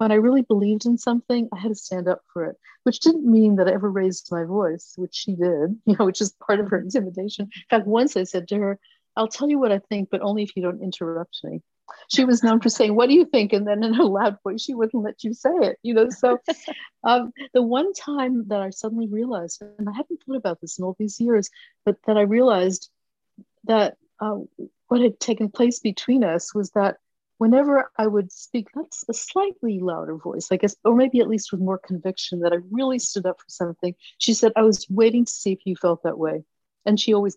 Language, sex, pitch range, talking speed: English, female, 190-240 Hz, 240 wpm